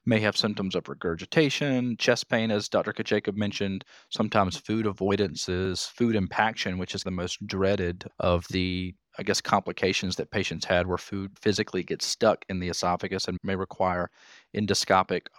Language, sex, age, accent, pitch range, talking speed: English, male, 40-59, American, 95-110 Hz, 160 wpm